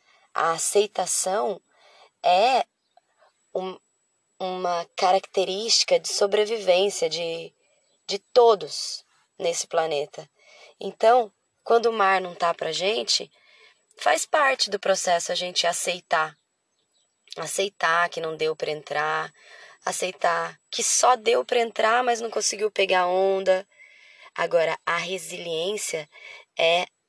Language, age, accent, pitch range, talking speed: Portuguese, 20-39, Brazilian, 180-280 Hz, 110 wpm